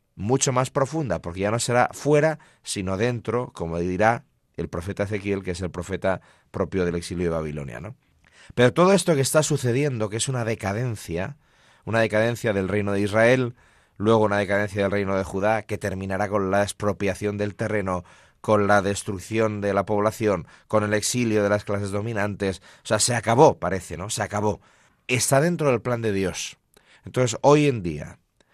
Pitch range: 95-120 Hz